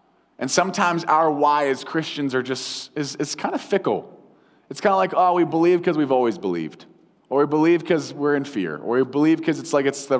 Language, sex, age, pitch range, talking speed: English, male, 20-39, 130-165 Hz, 230 wpm